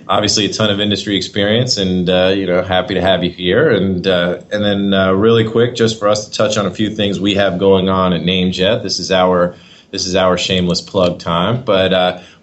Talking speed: 230 wpm